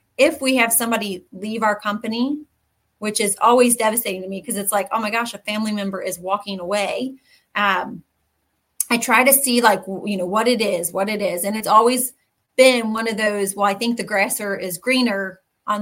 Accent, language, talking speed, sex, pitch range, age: American, English, 205 wpm, female, 200-245 Hz, 30-49